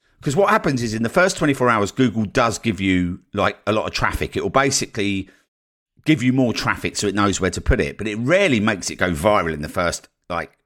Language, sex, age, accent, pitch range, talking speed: English, male, 50-69, British, 90-130 Hz, 240 wpm